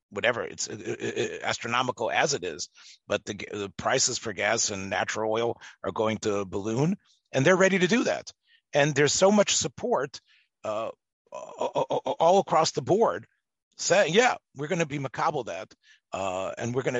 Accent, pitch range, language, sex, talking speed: American, 115-170 Hz, English, male, 160 wpm